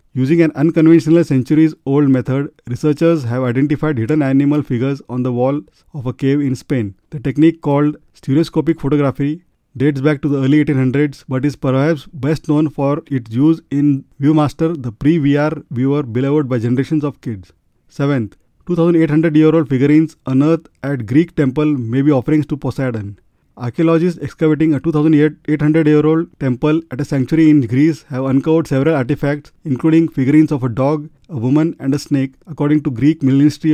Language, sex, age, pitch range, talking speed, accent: English, male, 30-49, 130-155 Hz, 160 wpm, Indian